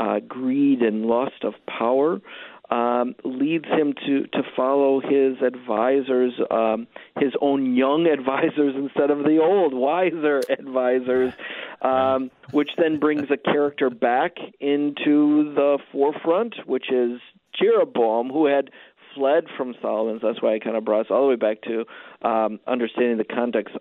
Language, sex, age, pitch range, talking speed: English, male, 50-69, 110-135 Hz, 150 wpm